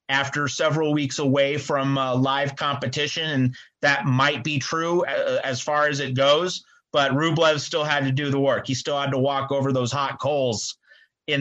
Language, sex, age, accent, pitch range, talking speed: English, male, 30-49, American, 130-155 Hz, 185 wpm